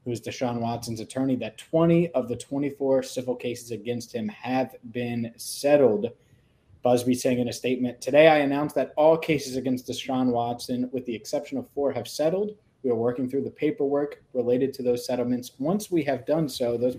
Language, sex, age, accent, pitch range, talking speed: English, male, 20-39, American, 120-145 Hz, 190 wpm